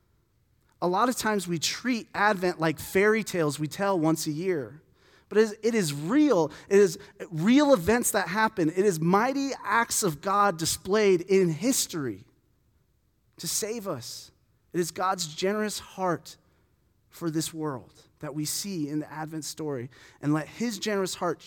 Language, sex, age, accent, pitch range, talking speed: English, male, 30-49, American, 120-170 Hz, 160 wpm